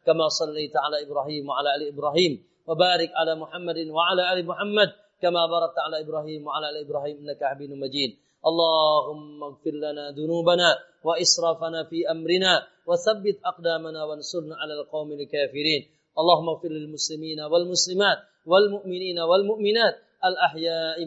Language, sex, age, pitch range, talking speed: Indonesian, male, 30-49, 155-195 Hz, 150 wpm